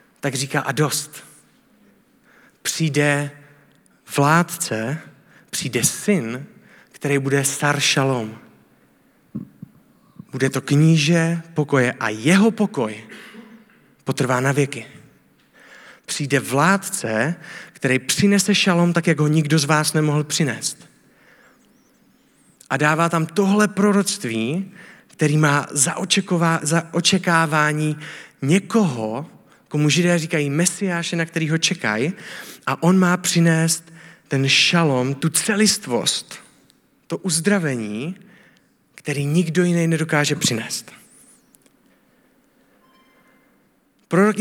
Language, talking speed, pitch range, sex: Czech, 90 wpm, 145-185 Hz, male